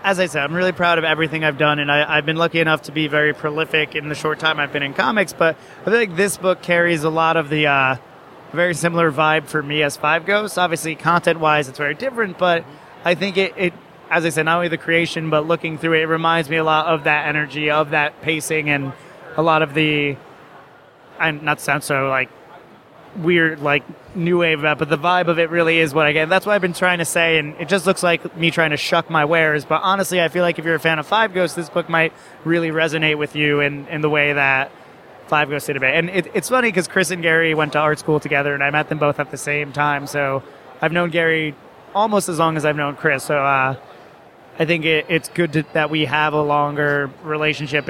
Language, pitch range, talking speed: English, 150-170 Hz, 250 wpm